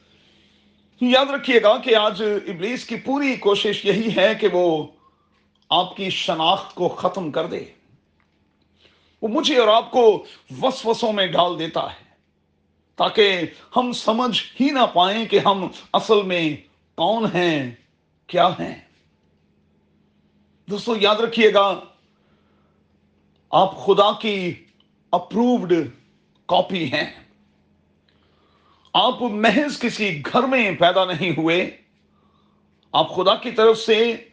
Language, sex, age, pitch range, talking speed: Urdu, male, 40-59, 185-235 Hz, 120 wpm